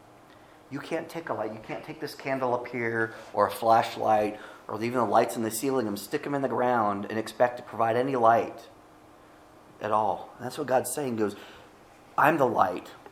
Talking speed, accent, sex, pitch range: 205 wpm, American, male, 110-130 Hz